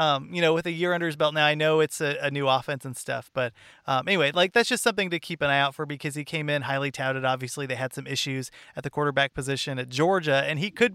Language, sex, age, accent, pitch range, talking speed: English, male, 30-49, American, 140-175 Hz, 285 wpm